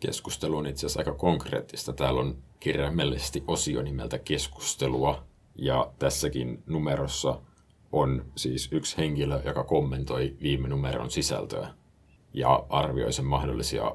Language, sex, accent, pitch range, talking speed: Finnish, male, native, 65-75 Hz, 120 wpm